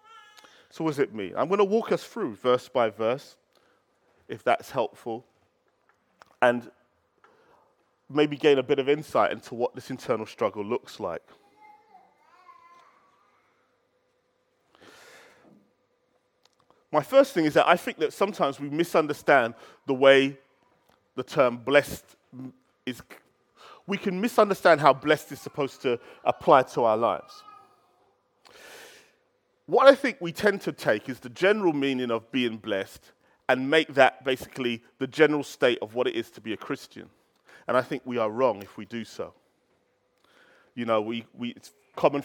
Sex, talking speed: male, 150 wpm